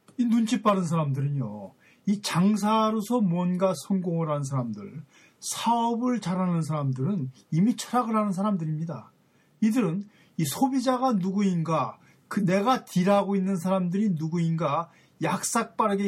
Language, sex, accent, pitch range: Korean, male, native, 155-220 Hz